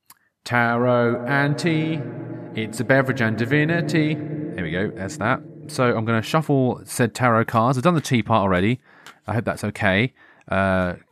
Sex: male